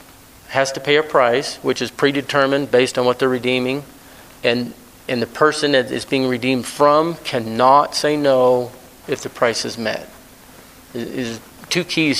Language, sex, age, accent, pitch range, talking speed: English, male, 40-59, American, 125-150 Hz, 165 wpm